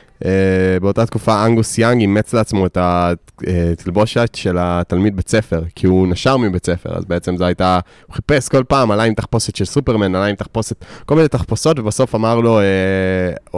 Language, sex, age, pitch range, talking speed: Hebrew, male, 20-39, 90-115 Hz, 180 wpm